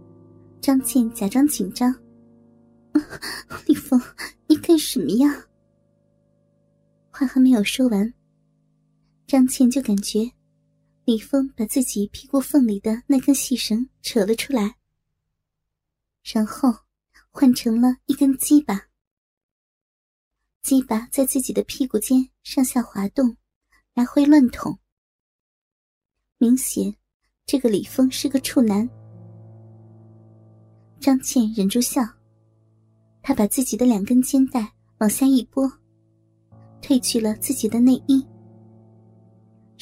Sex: male